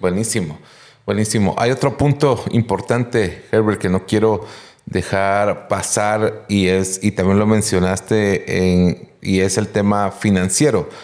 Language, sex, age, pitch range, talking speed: Spanish, male, 30-49, 95-110 Hz, 130 wpm